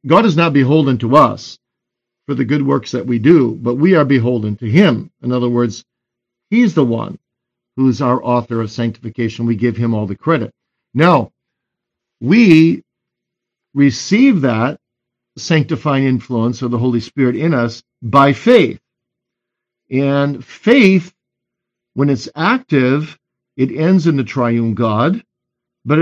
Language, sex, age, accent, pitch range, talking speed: English, male, 50-69, American, 120-165 Hz, 145 wpm